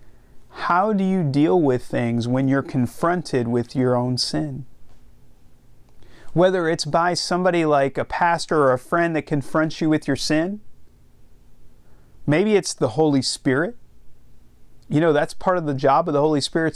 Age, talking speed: 40-59, 160 wpm